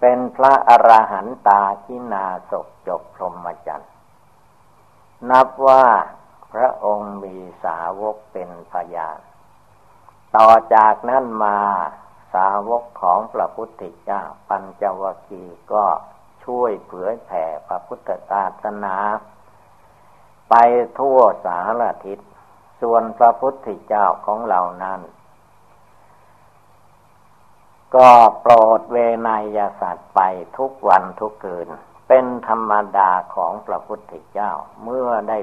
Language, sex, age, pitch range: Thai, male, 60-79, 100-120 Hz